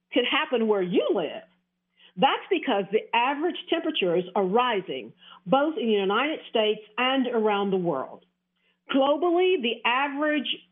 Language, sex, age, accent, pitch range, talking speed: English, female, 50-69, American, 195-280 Hz, 135 wpm